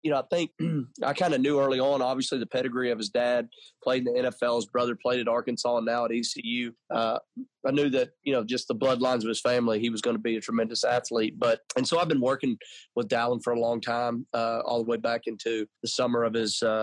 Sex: male